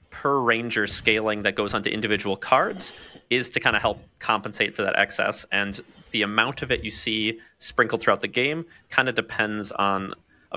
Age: 30-49